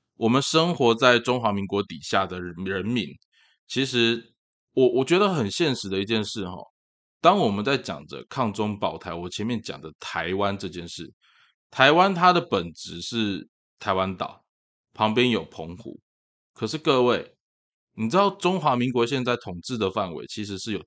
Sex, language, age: male, Chinese, 20-39